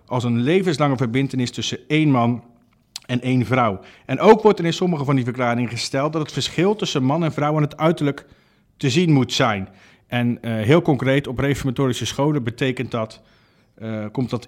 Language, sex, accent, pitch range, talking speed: Dutch, male, Dutch, 120-165 Hz, 180 wpm